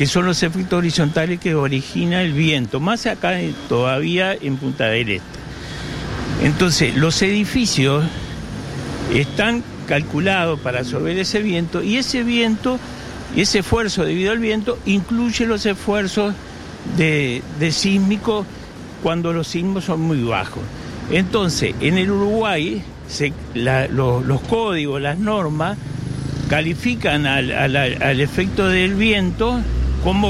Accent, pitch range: Argentinian, 140-205 Hz